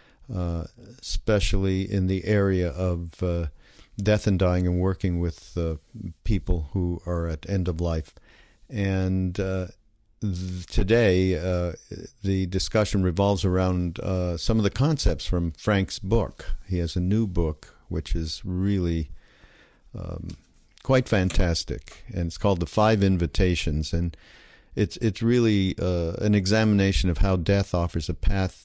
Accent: American